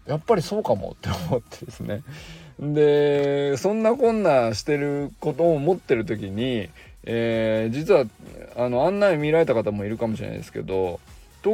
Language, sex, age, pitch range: Japanese, male, 20-39, 105-150 Hz